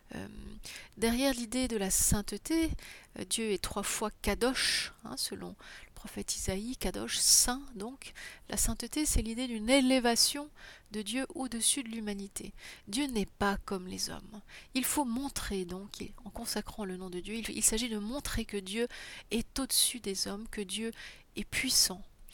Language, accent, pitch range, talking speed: French, French, 200-250 Hz, 165 wpm